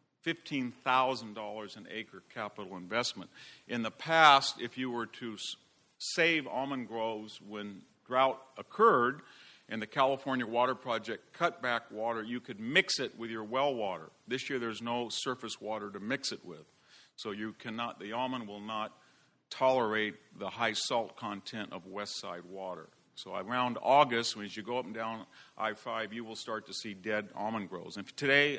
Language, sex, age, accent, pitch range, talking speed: English, male, 50-69, American, 110-130 Hz, 170 wpm